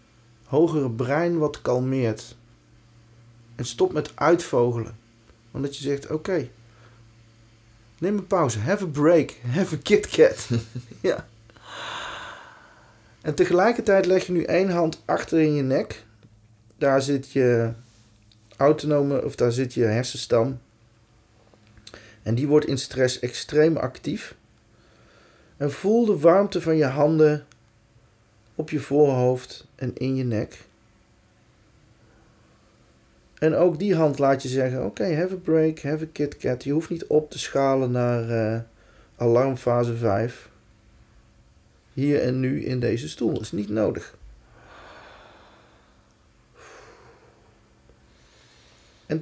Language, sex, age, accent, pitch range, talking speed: Dutch, male, 30-49, Dutch, 115-160 Hz, 125 wpm